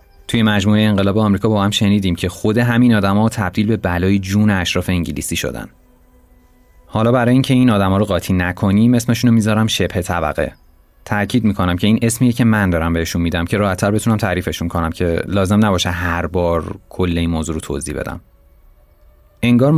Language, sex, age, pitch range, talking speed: Persian, male, 30-49, 90-115 Hz, 180 wpm